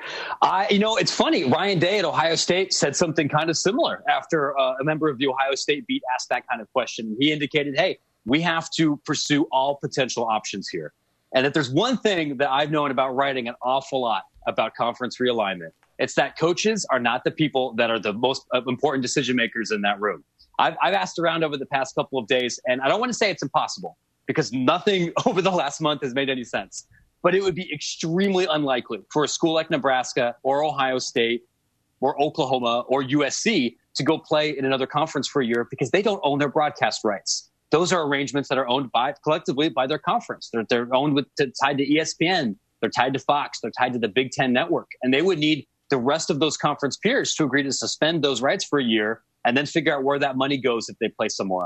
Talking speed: 225 wpm